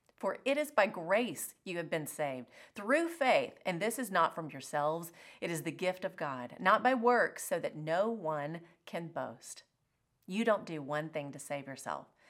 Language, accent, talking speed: English, American, 195 wpm